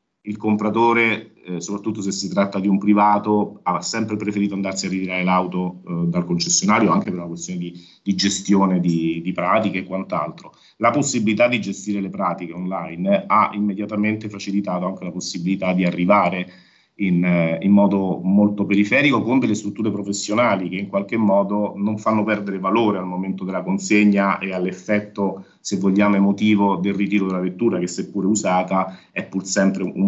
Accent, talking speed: native, 170 wpm